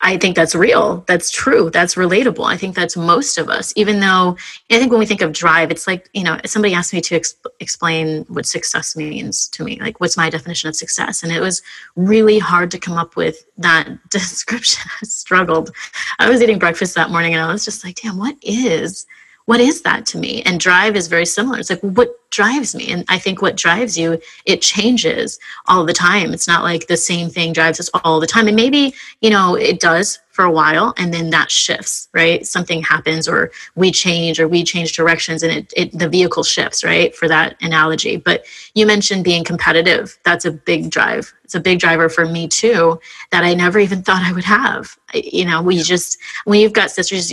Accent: American